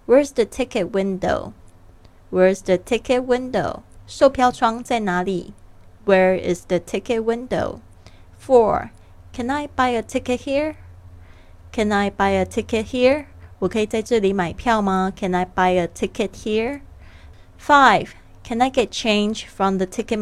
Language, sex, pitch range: Chinese, female, 185-235 Hz